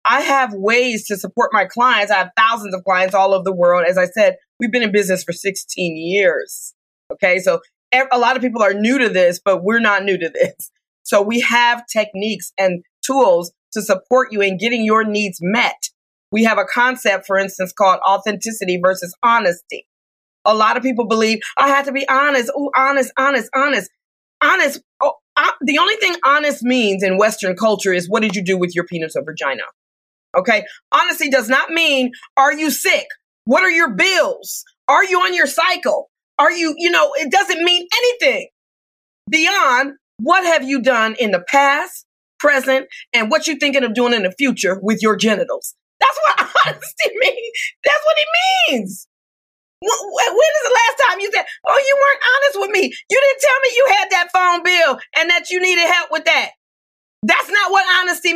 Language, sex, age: English, female, 30-49